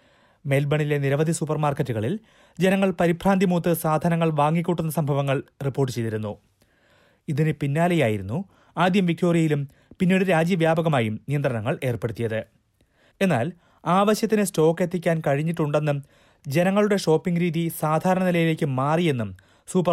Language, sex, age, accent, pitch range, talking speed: Malayalam, male, 30-49, native, 135-175 Hz, 90 wpm